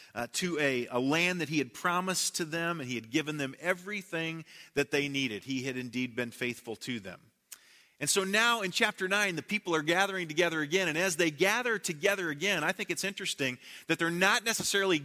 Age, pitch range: 40-59, 155-195 Hz